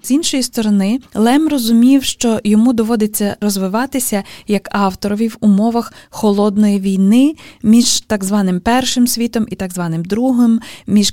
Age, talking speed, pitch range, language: 20-39, 135 wpm, 195-245 Hz, Ukrainian